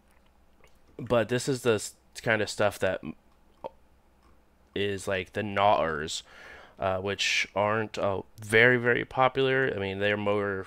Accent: American